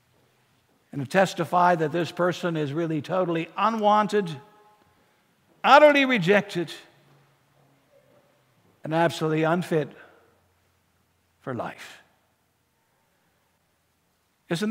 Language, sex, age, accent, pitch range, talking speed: English, male, 60-79, American, 190-295 Hz, 65 wpm